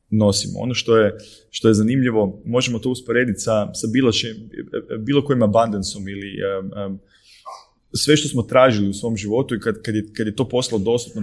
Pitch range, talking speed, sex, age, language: 100-120 Hz, 190 wpm, male, 30-49, Croatian